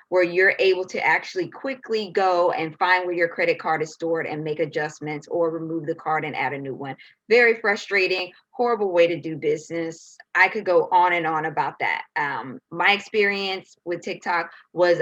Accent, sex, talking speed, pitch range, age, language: American, female, 190 wpm, 170-225 Hz, 20-39, English